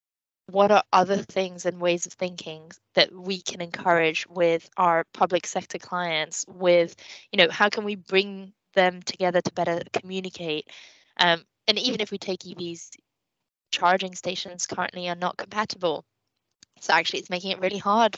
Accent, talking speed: British, 160 wpm